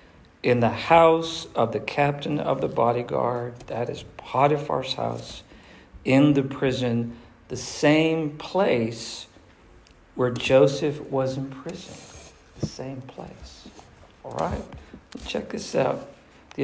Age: 50-69